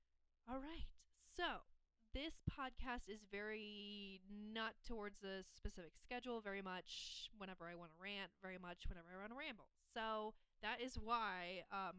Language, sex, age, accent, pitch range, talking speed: English, female, 20-39, American, 185-235 Hz, 150 wpm